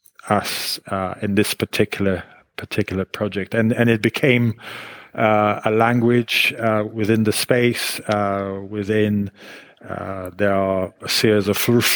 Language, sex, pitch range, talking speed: English, male, 100-110 Hz, 135 wpm